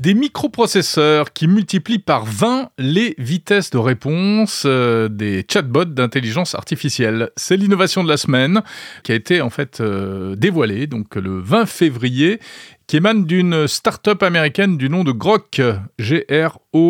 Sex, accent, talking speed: male, French, 140 wpm